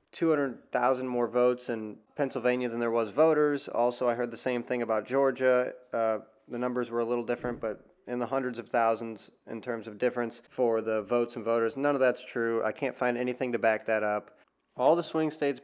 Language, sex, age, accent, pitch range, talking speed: English, male, 20-39, American, 115-140 Hz, 210 wpm